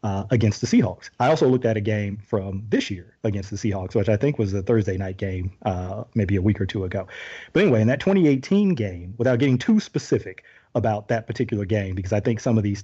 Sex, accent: male, American